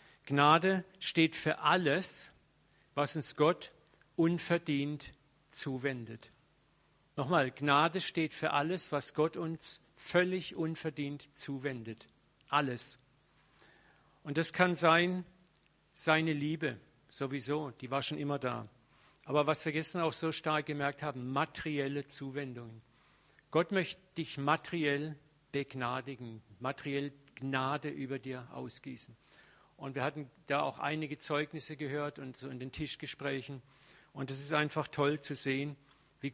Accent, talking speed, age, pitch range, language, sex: German, 125 wpm, 50-69, 135-155 Hz, German, male